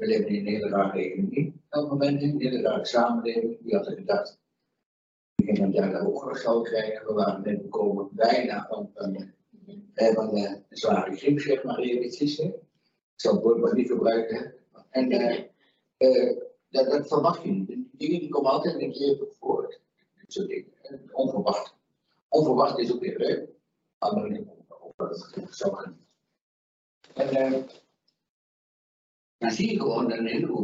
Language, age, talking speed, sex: Dutch, 60-79, 165 wpm, male